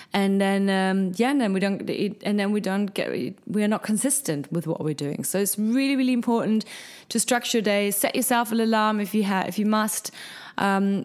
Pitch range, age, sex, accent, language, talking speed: 180-225 Hz, 20-39, female, German, German, 225 wpm